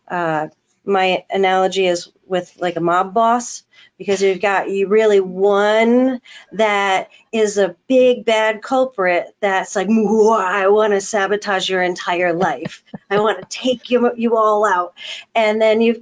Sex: female